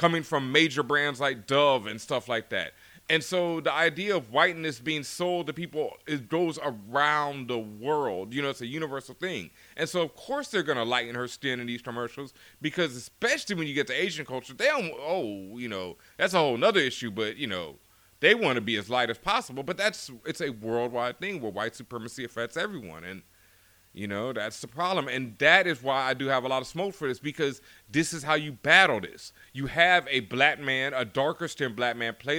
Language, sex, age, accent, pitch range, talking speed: English, male, 30-49, American, 120-165 Hz, 225 wpm